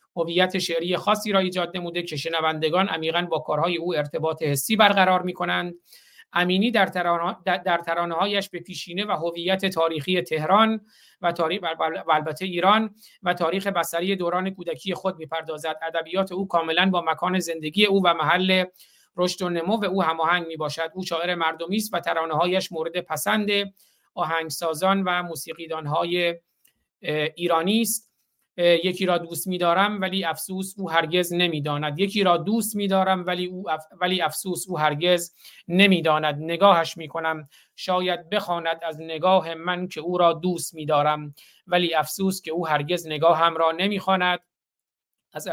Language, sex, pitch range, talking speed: Persian, male, 165-185 Hz, 145 wpm